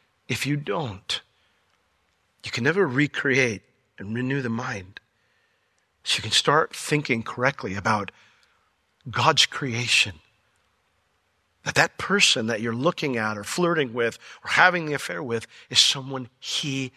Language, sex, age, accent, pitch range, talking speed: English, male, 50-69, American, 110-145 Hz, 135 wpm